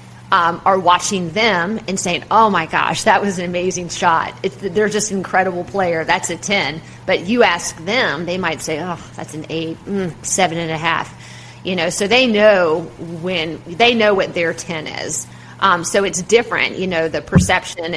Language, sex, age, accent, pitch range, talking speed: English, female, 30-49, American, 165-200 Hz, 195 wpm